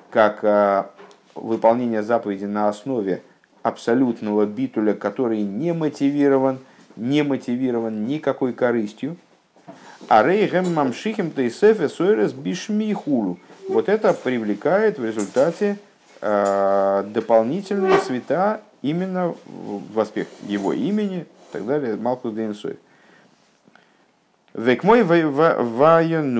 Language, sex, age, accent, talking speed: Russian, male, 50-69, native, 80 wpm